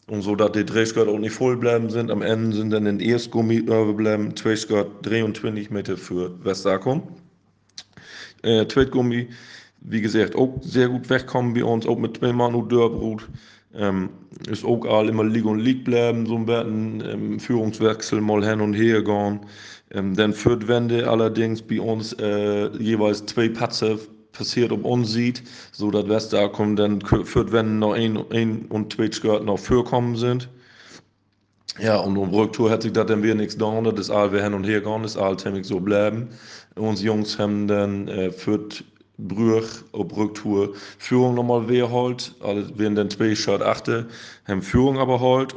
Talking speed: 180 wpm